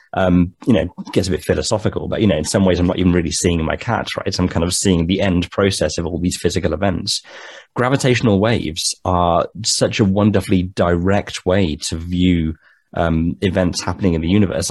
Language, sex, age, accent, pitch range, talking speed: English, male, 20-39, British, 85-100 Hz, 210 wpm